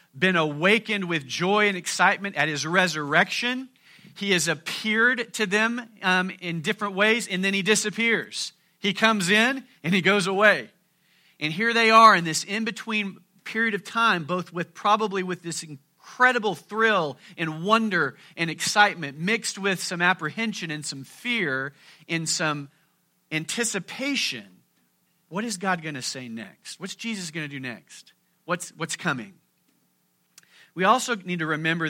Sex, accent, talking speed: male, American, 150 wpm